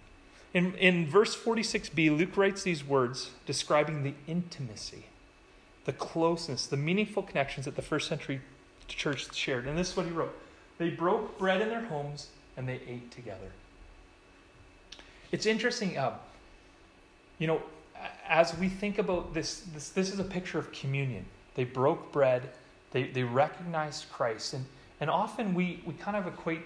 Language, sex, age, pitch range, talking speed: English, male, 30-49, 135-180 Hz, 160 wpm